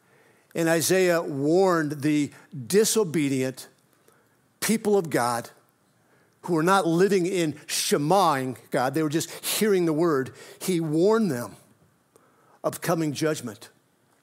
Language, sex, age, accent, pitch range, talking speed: English, male, 60-79, American, 140-180 Hz, 115 wpm